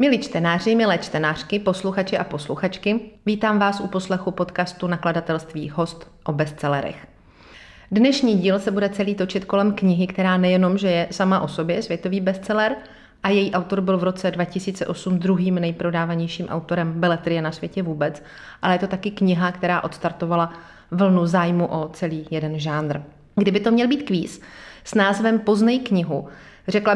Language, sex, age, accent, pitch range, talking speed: Czech, female, 30-49, native, 170-205 Hz, 155 wpm